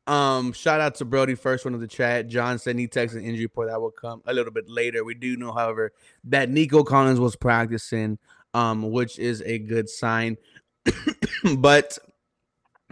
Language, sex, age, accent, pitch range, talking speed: English, male, 20-39, American, 120-160 Hz, 185 wpm